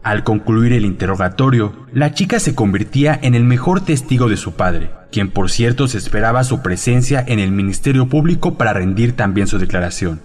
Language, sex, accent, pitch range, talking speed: Spanish, male, Mexican, 95-135 Hz, 180 wpm